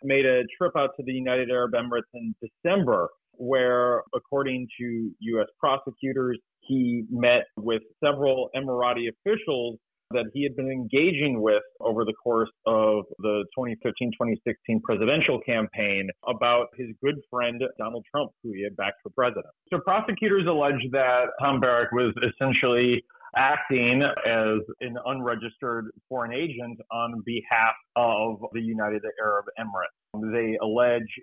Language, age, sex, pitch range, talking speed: English, 30-49, male, 110-130 Hz, 135 wpm